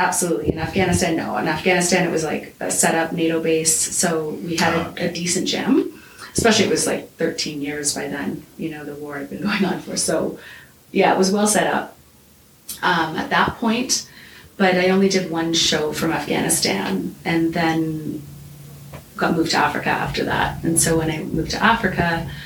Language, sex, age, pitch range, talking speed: English, female, 30-49, 165-200 Hz, 190 wpm